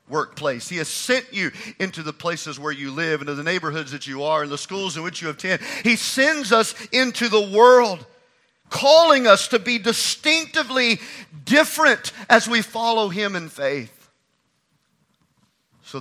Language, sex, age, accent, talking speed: English, male, 50-69, American, 160 wpm